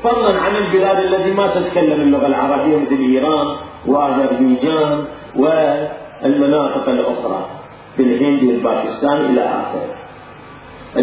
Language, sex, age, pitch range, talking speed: Arabic, male, 40-59, 150-220 Hz, 100 wpm